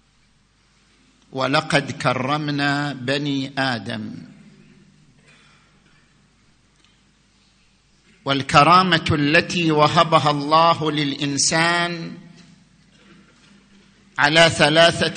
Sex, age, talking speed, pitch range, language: male, 50-69, 45 wpm, 145-185 Hz, Arabic